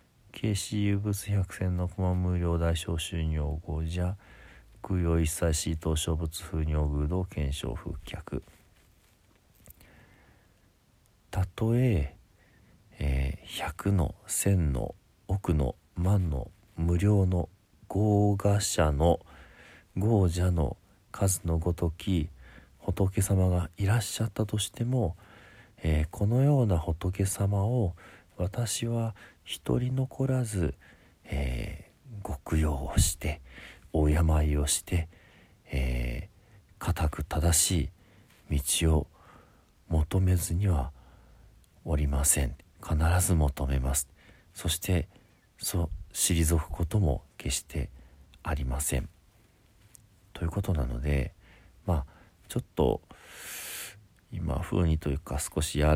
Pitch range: 75-100 Hz